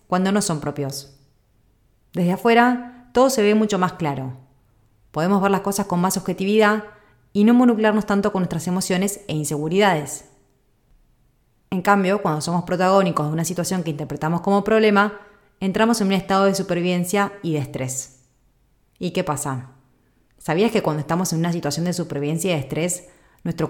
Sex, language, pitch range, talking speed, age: female, Spanish, 150-200 Hz, 165 wpm, 30-49